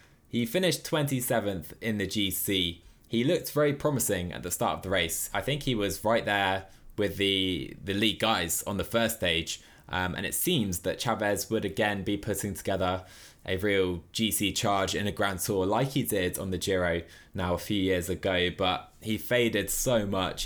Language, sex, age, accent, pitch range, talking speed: English, male, 20-39, British, 90-115 Hz, 195 wpm